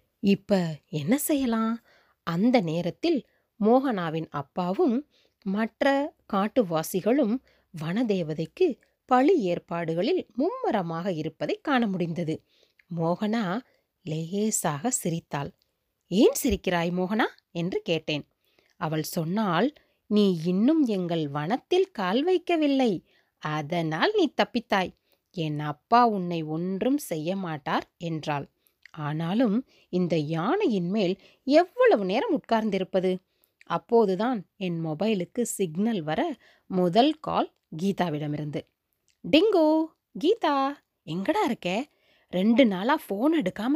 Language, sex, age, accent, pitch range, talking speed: Tamil, female, 20-39, native, 170-255 Hz, 90 wpm